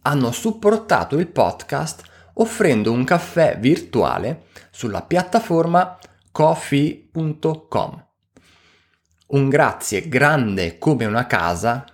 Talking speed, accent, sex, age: 85 wpm, native, male, 30-49